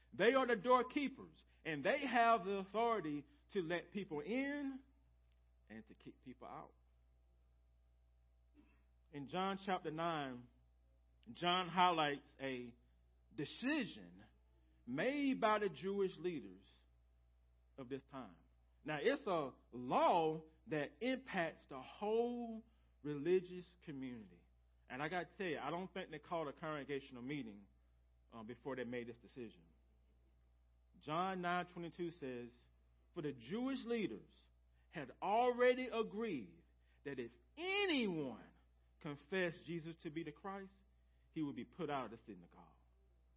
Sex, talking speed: male, 125 wpm